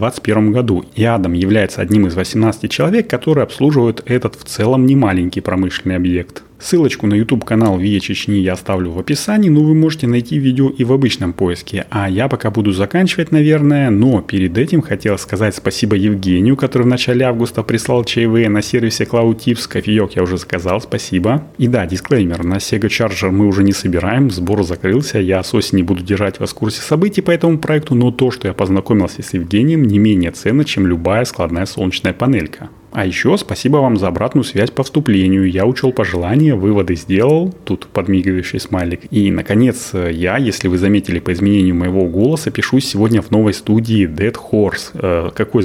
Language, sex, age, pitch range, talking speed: Russian, male, 30-49, 95-125 Hz, 185 wpm